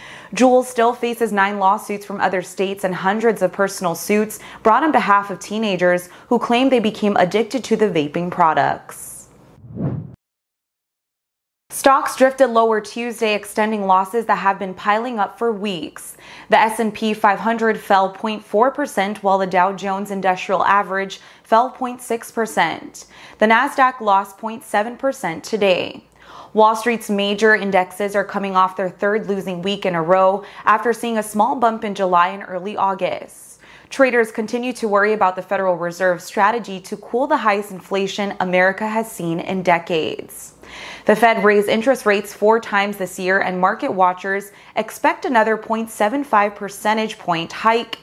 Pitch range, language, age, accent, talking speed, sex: 190-225 Hz, English, 20-39, American, 150 wpm, female